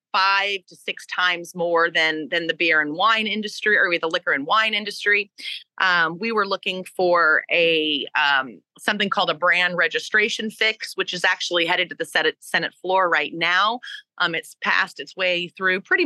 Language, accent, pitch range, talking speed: English, American, 170-210 Hz, 180 wpm